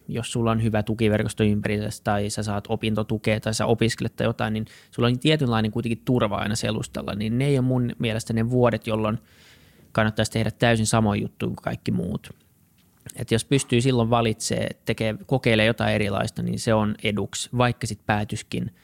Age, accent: 20-39, native